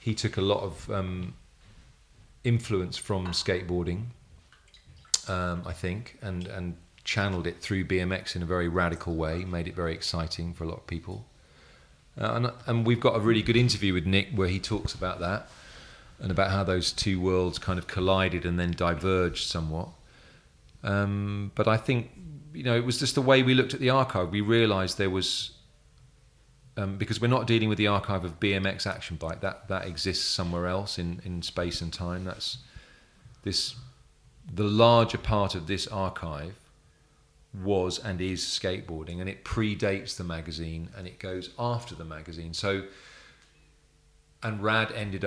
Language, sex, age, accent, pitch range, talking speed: English, male, 40-59, British, 90-110 Hz, 170 wpm